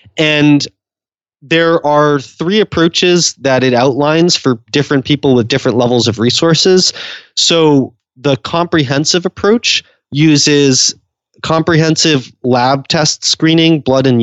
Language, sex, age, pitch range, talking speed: English, male, 30-49, 120-160 Hz, 115 wpm